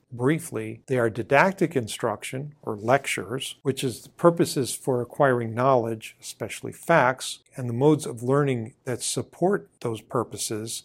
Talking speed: 140 wpm